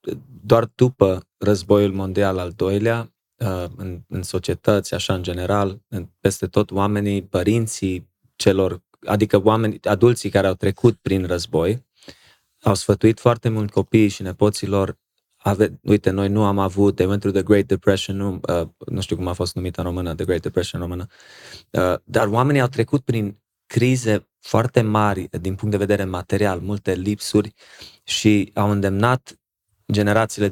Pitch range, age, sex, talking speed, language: 95-110 Hz, 20-39, male, 150 wpm, Romanian